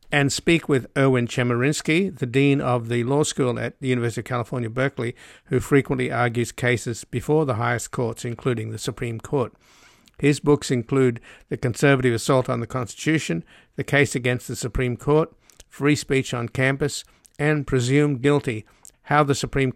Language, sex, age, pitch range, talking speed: English, male, 50-69, 120-135 Hz, 165 wpm